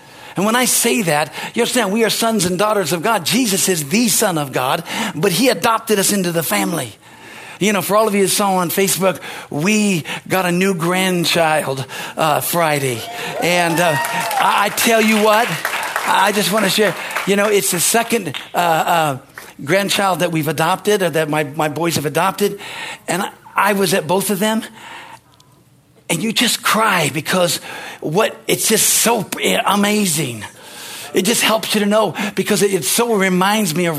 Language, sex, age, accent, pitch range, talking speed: English, male, 50-69, American, 180-230 Hz, 185 wpm